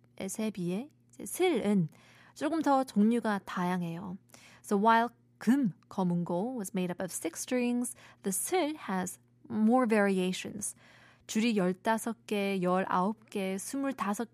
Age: 20-39